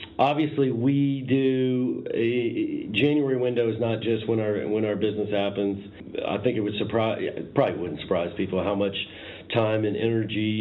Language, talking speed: English, 170 wpm